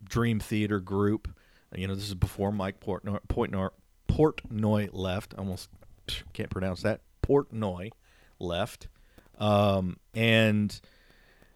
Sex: male